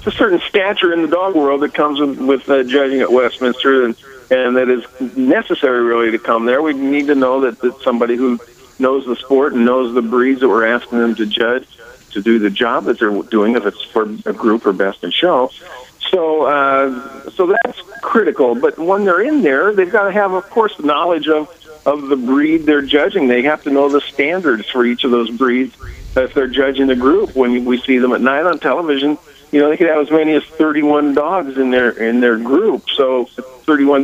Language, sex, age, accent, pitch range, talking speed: English, male, 50-69, American, 125-150 Hz, 220 wpm